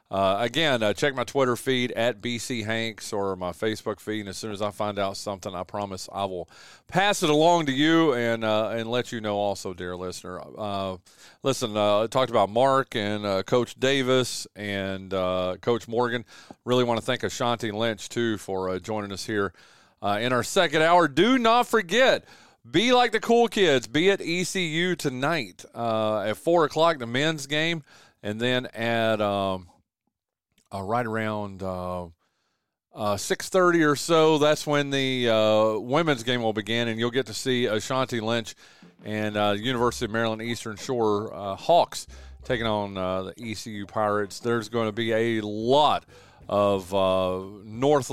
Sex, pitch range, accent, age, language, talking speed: male, 105-135 Hz, American, 40-59, English, 180 wpm